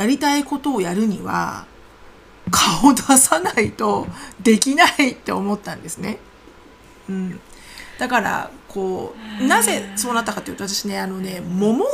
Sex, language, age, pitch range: female, Japanese, 40-59, 200-315 Hz